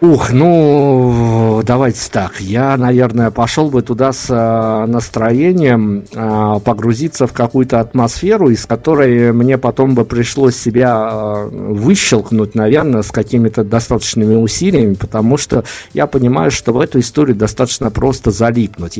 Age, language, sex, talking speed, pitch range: 50-69, Russian, male, 125 wpm, 110-130 Hz